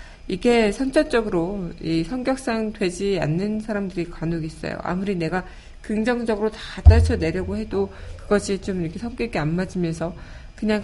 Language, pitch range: Korean, 160-210 Hz